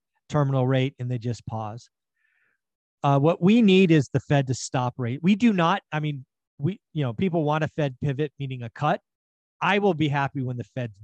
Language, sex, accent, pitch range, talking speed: English, male, American, 130-165 Hz, 210 wpm